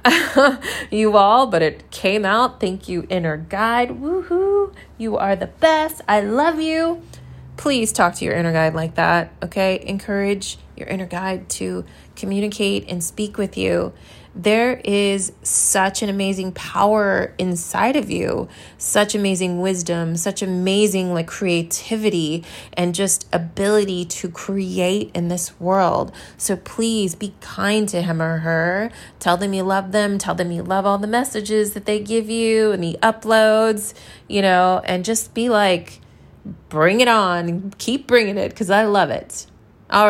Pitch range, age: 180-220 Hz, 20-39